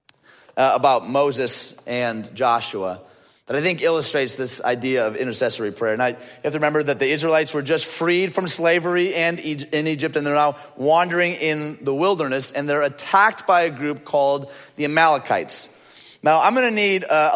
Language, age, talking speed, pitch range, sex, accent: English, 30-49, 180 wpm, 140-175 Hz, male, American